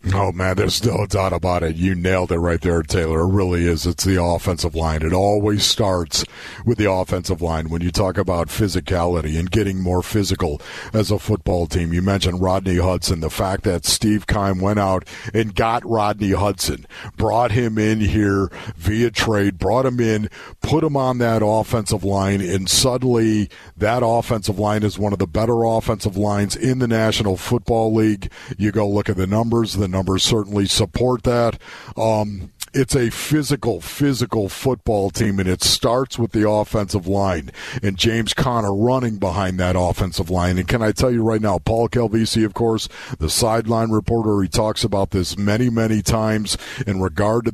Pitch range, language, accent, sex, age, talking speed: 95-115 Hz, English, American, male, 50-69, 180 wpm